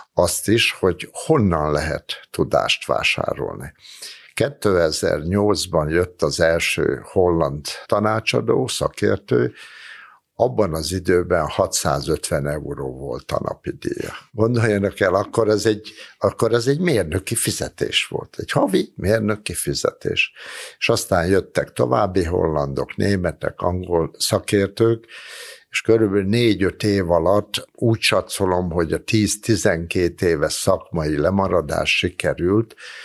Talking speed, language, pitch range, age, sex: 105 wpm, Hungarian, 85-105 Hz, 60-79, male